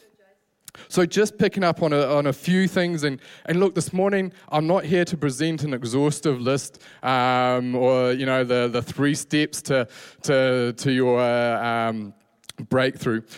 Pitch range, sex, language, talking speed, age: 130-175 Hz, male, English, 170 wpm, 20-39